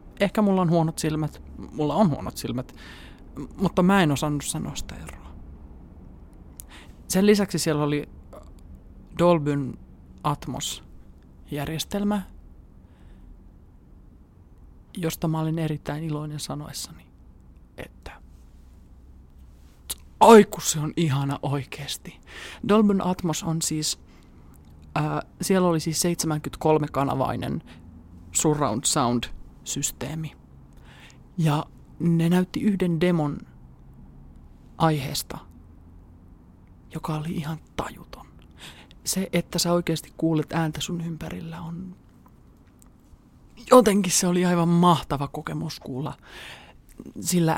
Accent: native